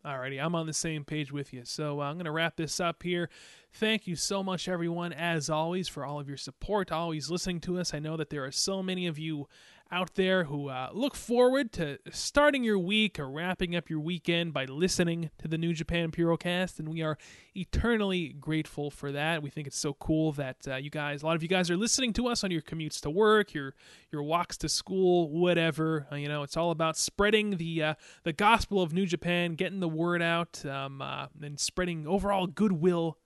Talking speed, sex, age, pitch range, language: 225 wpm, male, 20-39, 155-190 Hz, English